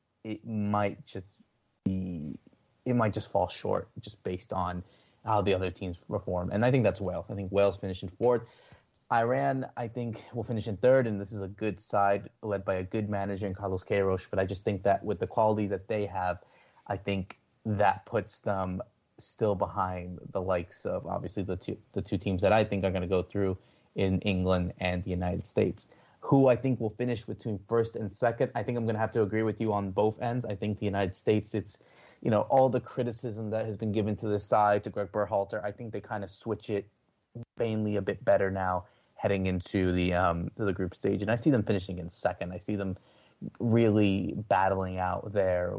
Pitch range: 95-110 Hz